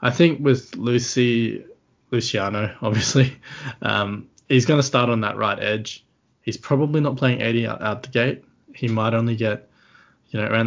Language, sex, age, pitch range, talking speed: English, male, 20-39, 105-125 Hz, 175 wpm